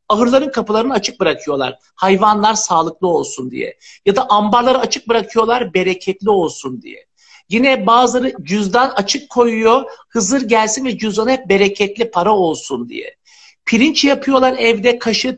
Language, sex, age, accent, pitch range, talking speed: Turkish, male, 60-79, native, 215-275 Hz, 135 wpm